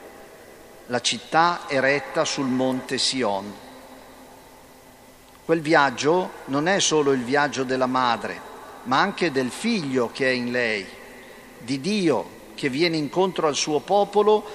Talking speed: 130 wpm